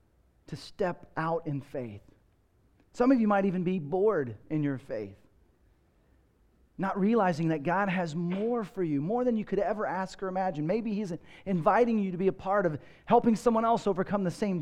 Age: 40-59